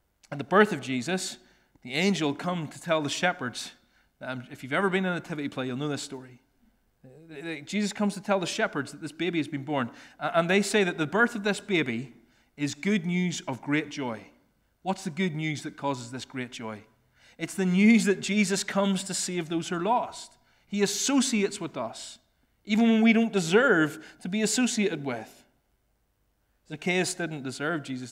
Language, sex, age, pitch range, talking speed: English, male, 30-49, 135-195 Hz, 190 wpm